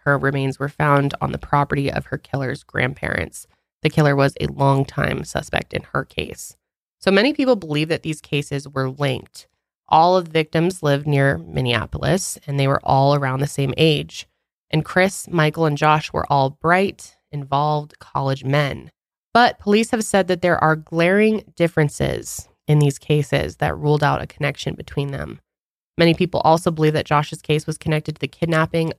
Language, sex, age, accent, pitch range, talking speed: English, female, 20-39, American, 140-165 Hz, 180 wpm